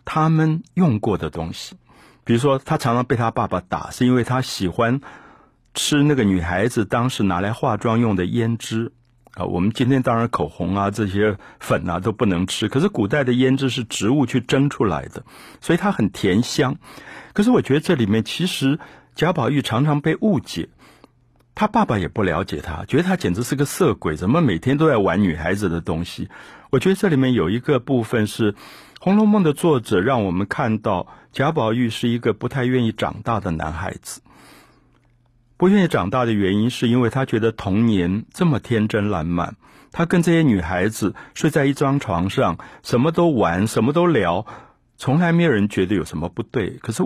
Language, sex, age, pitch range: Chinese, male, 50-69, 105-145 Hz